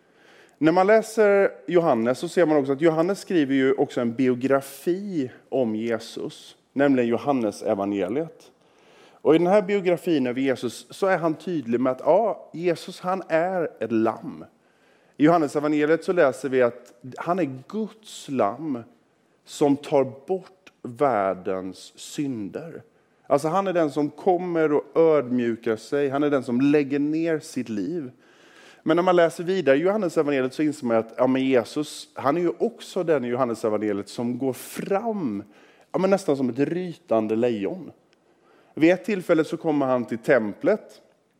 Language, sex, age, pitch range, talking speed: Swedish, male, 30-49, 125-170 Hz, 160 wpm